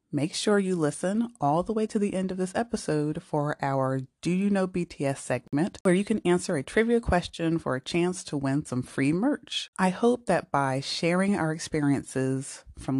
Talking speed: 200 wpm